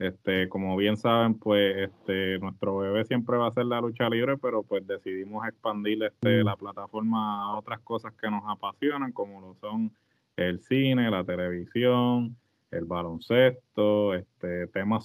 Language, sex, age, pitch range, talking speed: Spanish, male, 20-39, 105-125 Hz, 155 wpm